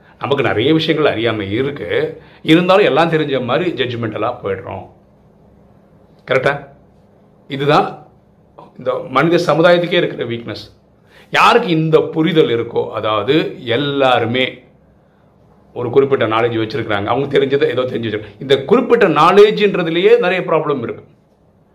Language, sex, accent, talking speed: Tamil, male, native, 110 wpm